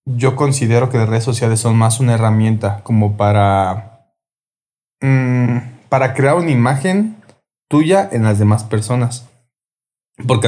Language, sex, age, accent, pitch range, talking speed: Spanish, male, 20-39, Mexican, 110-125 Hz, 130 wpm